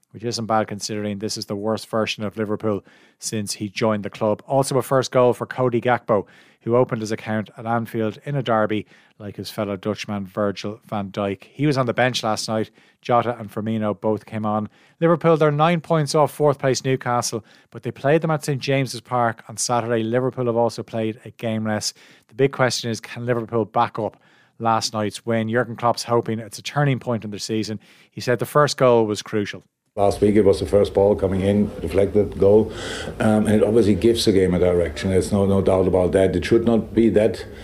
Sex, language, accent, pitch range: male, English, Irish, 105-120 Hz